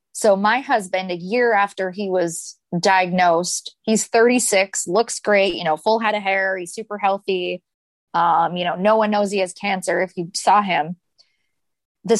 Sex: female